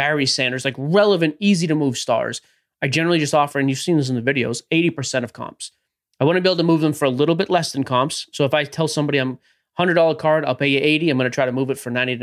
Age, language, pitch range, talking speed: 20-39, English, 130-165 Hz, 290 wpm